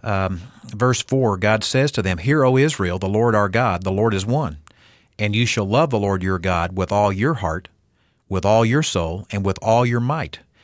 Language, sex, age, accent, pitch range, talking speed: English, male, 50-69, American, 100-135 Hz, 220 wpm